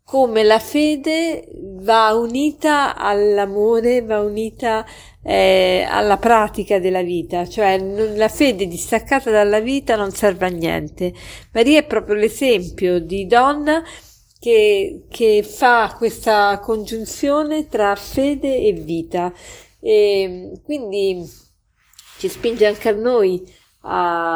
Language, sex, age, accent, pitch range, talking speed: Italian, female, 50-69, native, 195-265 Hz, 115 wpm